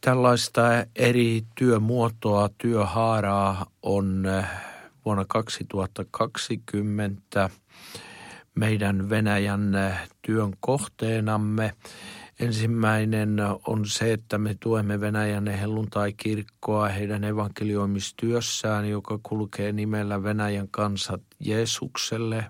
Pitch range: 100-110 Hz